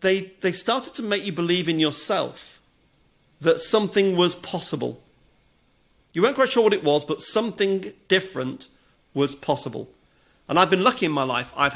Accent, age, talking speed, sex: British, 40-59, 170 wpm, male